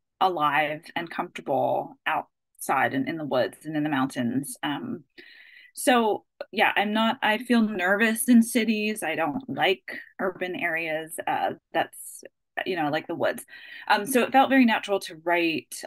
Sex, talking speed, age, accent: female, 160 wpm, 20-39, American